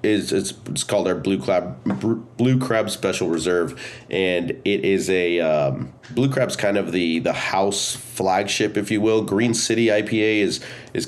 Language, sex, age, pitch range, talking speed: English, male, 30-49, 95-115 Hz, 175 wpm